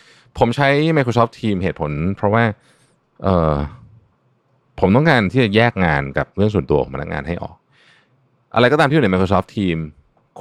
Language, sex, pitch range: Thai, male, 80-115 Hz